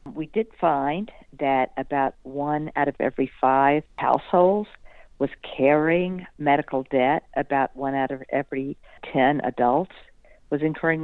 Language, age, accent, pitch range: English, 50-69, American, 140-170 Hz